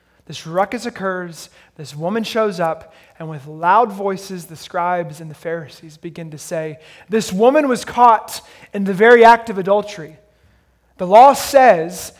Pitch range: 165-230 Hz